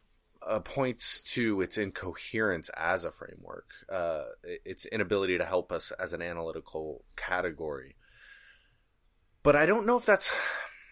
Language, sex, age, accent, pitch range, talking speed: English, male, 20-39, American, 95-120 Hz, 130 wpm